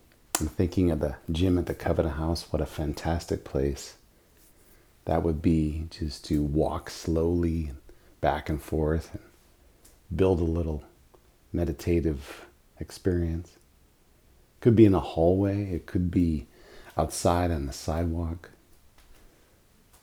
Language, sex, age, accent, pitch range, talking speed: English, male, 40-59, American, 75-90 Hz, 125 wpm